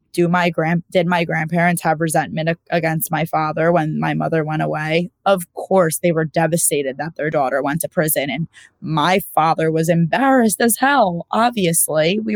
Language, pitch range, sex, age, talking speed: English, 160-195 Hz, female, 20-39, 175 wpm